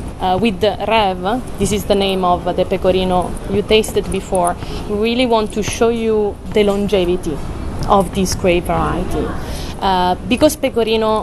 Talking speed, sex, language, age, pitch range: 160 wpm, female, English, 20-39, 190-220 Hz